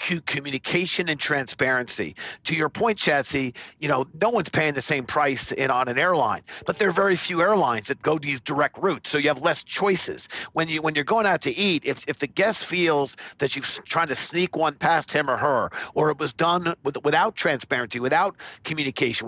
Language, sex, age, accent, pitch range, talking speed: English, male, 50-69, American, 140-175 Hz, 210 wpm